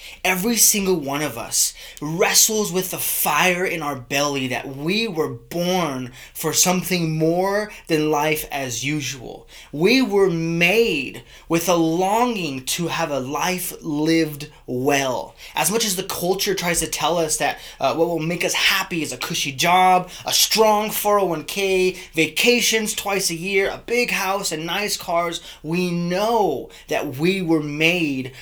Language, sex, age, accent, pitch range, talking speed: English, male, 20-39, American, 150-190 Hz, 155 wpm